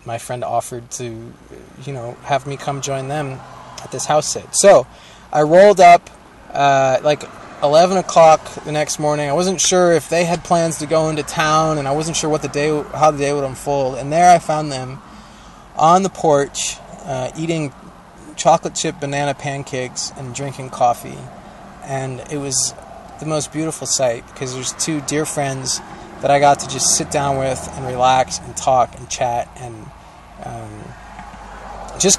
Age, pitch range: 20-39, 135-165 Hz